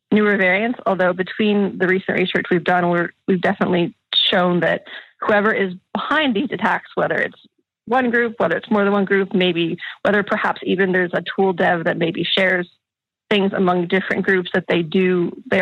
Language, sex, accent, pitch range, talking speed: English, female, American, 180-200 Hz, 180 wpm